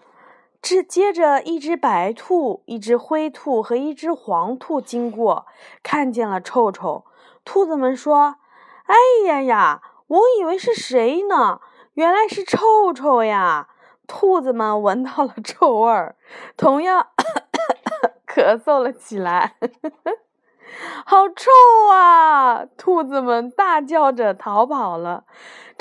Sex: female